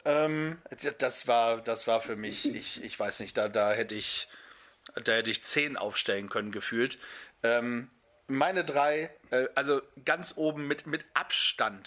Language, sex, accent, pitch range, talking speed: German, male, German, 120-140 Hz, 145 wpm